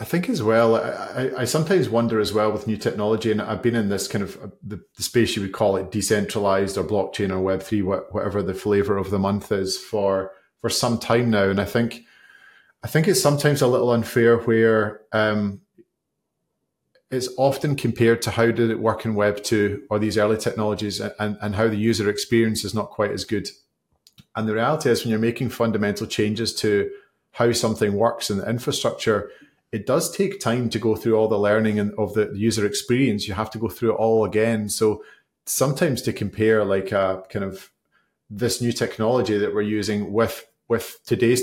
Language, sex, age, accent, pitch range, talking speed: English, male, 30-49, British, 105-115 Hz, 195 wpm